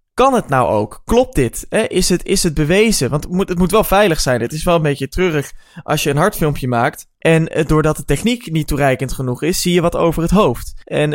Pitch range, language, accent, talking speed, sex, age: 140-180 Hz, Dutch, Dutch, 235 wpm, male, 20-39